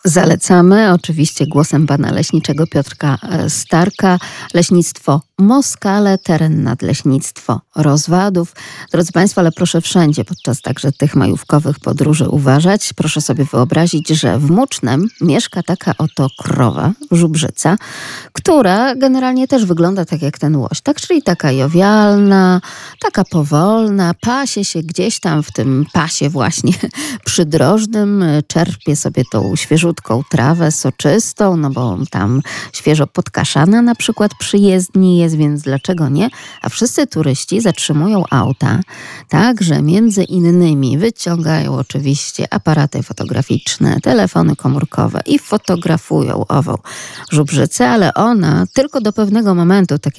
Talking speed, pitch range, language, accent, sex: 120 wpm, 145-195 Hz, Polish, native, female